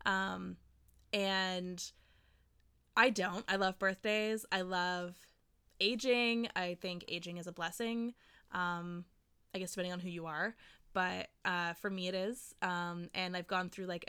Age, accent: 20-39, American